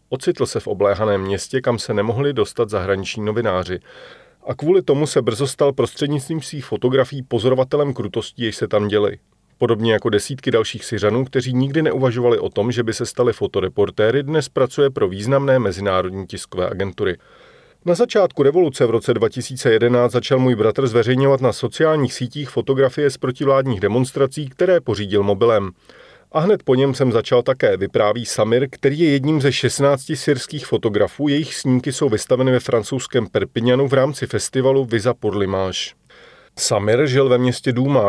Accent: native